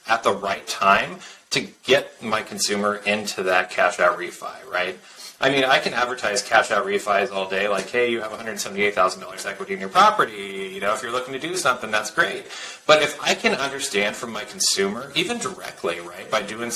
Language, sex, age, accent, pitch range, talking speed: English, male, 30-49, American, 105-130 Hz, 200 wpm